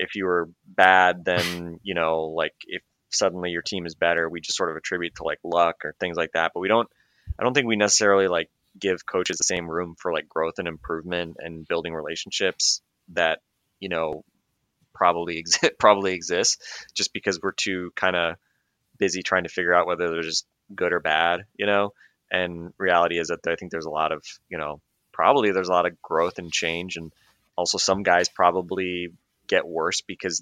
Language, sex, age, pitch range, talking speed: English, male, 20-39, 85-95 Hz, 200 wpm